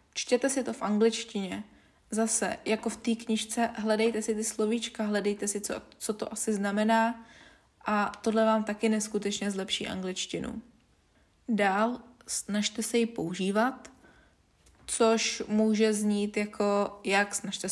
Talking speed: 130 wpm